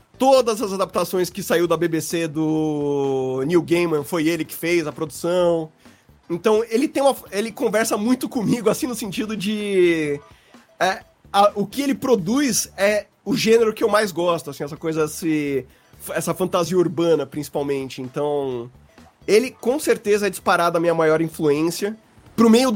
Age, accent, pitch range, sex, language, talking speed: 30-49, Brazilian, 165-225 Hz, male, Portuguese, 165 wpm